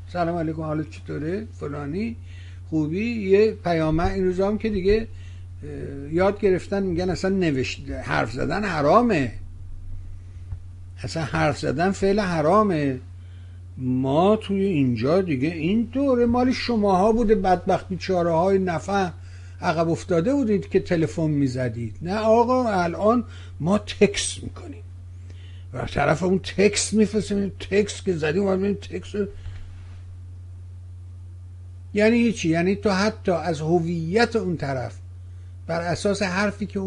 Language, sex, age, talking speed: Persian, male, 60-79, 115 wpm